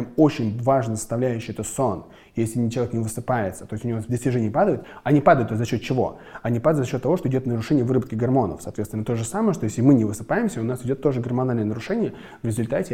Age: 20-39